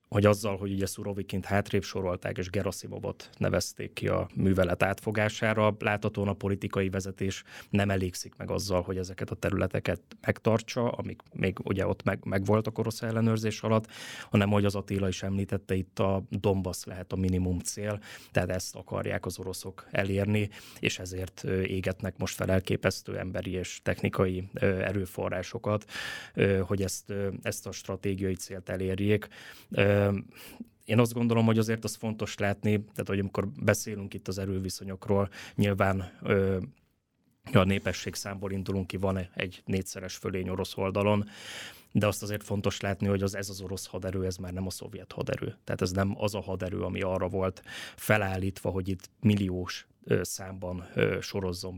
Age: 20-39